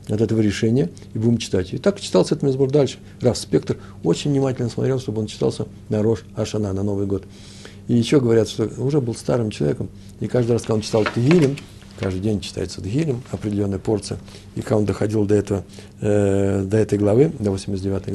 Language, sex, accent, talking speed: Russian, male, native, 195 wpm